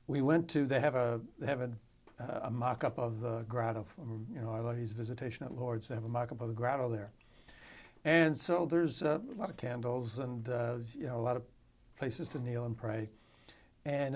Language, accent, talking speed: English, American, 220 wpm